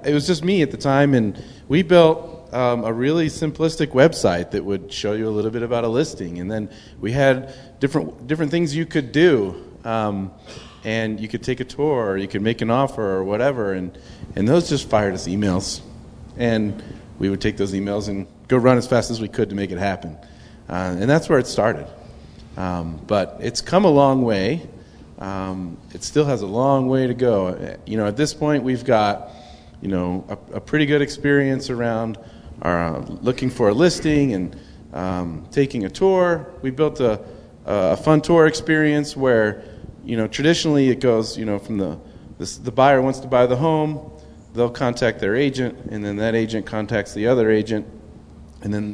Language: English